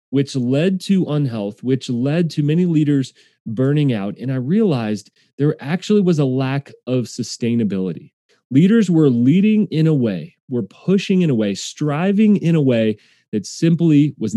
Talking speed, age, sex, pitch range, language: 165 wpm, 30-49, male, 115-160 Hz, English